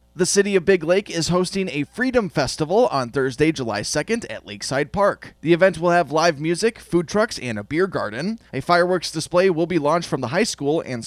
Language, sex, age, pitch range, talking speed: English, male, 20-39, 130-175 Hz, 215 wpm